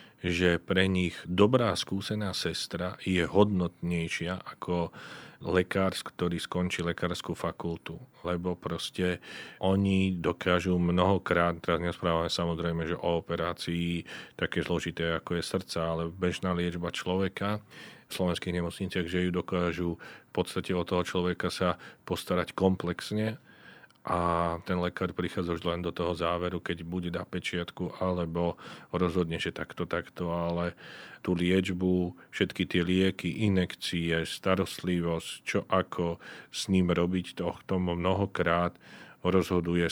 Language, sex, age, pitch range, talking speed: Slovak, male, 40-59, 85-95 Hz, 125 wpm